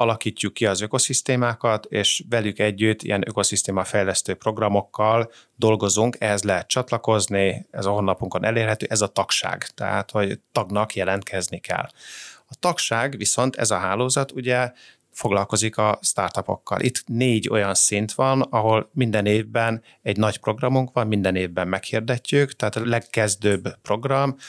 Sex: male